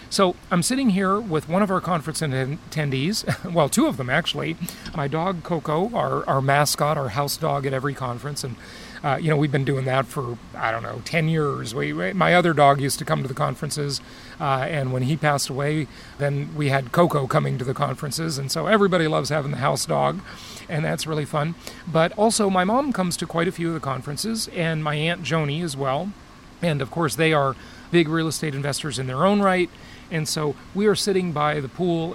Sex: male